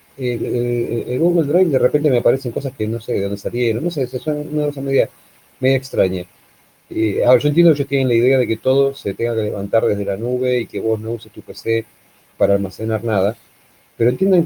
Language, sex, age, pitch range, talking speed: Spanish, male, 30-49, 110-130 Hz, 230 wpm